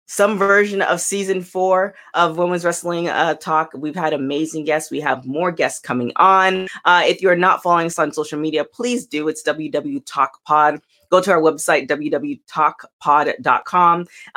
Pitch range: 150-190 Hz